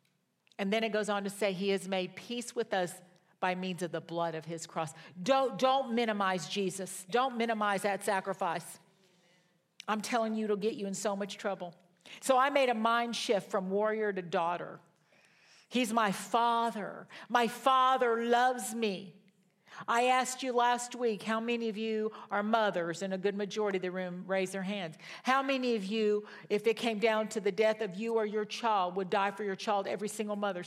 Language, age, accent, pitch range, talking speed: English, 50-69, American, 185-230 Hz, 200 wpm